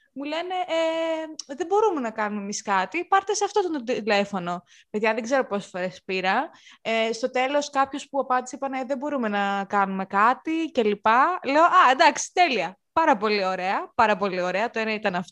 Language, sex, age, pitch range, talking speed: Greek, female, 20-39, 200-310 Hz, 190 wpm